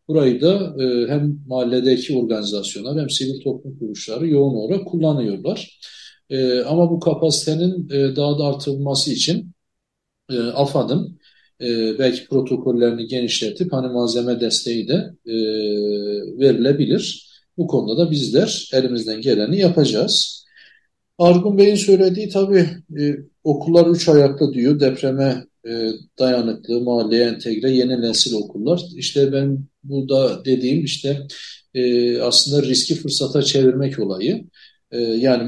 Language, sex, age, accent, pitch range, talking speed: Turkish, male, 40-59, native, 120-155 Hz, 115 wpm